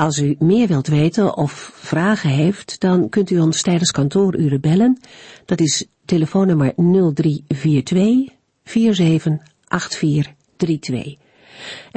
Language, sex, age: Dutch, female, 50-69